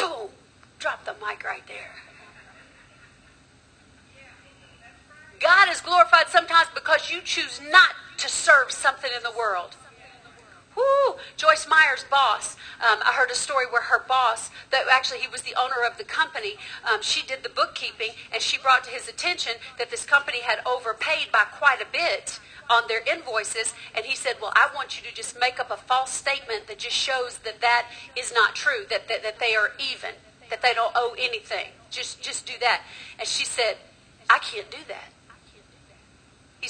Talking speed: 175 wpm